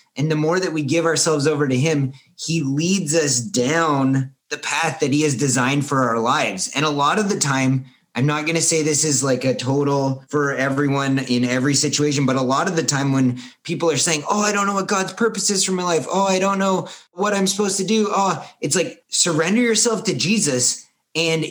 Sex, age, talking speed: male, 30-49, 230 wpm